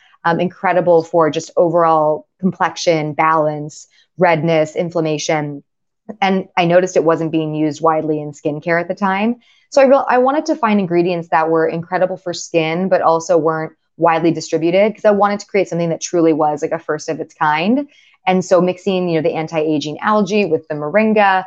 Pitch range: 160-190 Hz